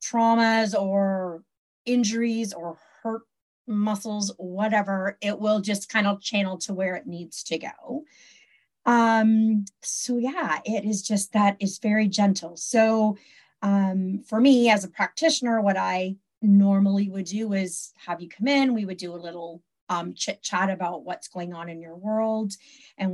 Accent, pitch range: American, 180-220 Hz